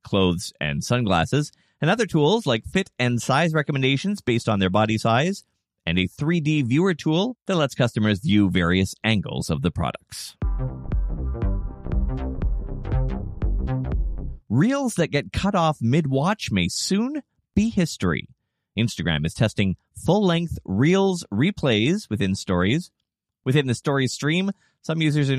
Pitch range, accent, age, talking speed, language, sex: 95-150 Hz, American, 30-49, 130 wpm, English, male